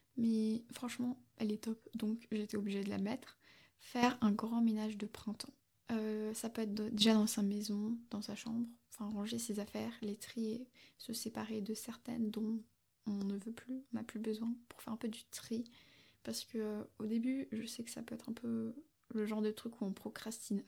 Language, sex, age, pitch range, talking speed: French, female, 20-39, 215-235 Hz, 210 wpm